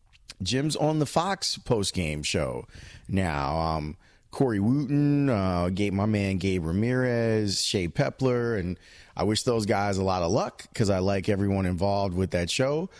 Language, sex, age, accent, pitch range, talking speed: English, male, 30-49, American, 90-110 Hz, 155 wpm